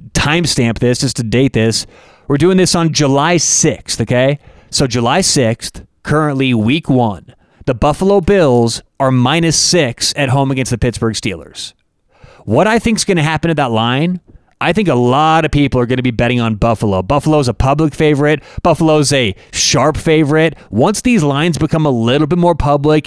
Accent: American